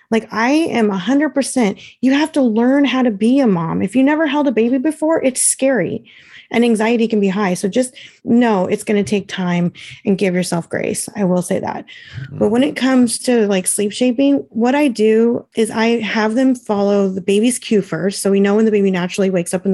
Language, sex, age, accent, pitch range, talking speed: English, female, 30-49, American, 190-240 Hz, 230 wpm